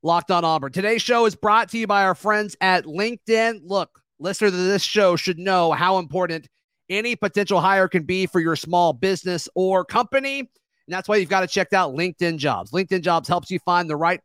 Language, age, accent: English, 30-49, American